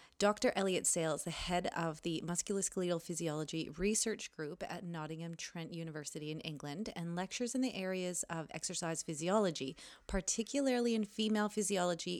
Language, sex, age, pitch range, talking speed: English, female, 30-49, 165-205 Hz, 150 wpm